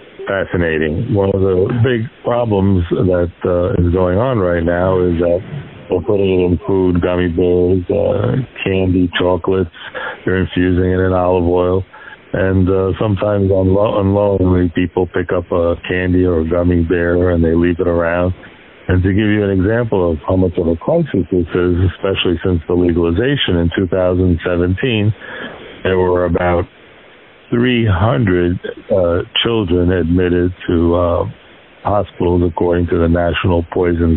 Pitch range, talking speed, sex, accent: 90-100 Hz, 155 wpm, male, American